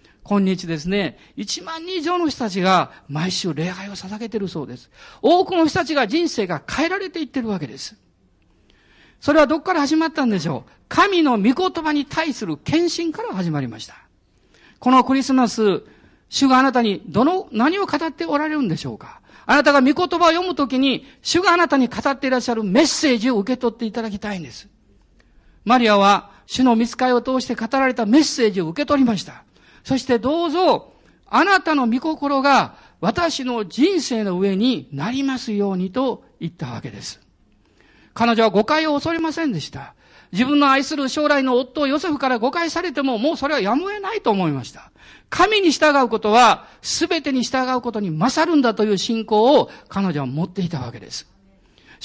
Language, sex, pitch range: Japanese, male, 195-300 Hz